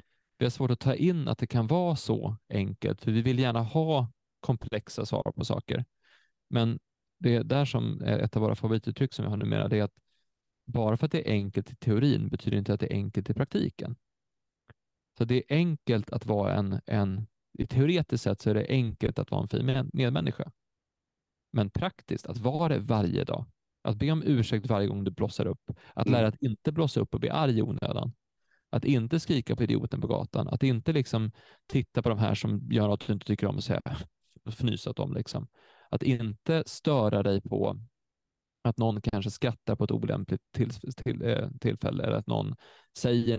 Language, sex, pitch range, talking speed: Swedish, male, 110-140 Hz, 200 wpm